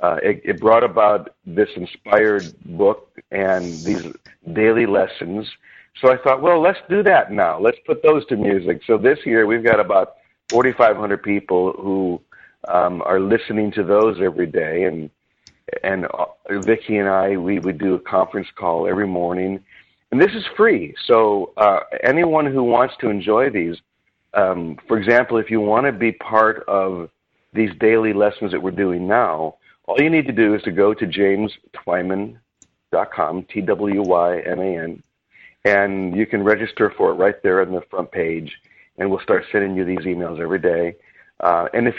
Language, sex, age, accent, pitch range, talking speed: English, male, 50-69, American, 95-110 Hz, 170 wpm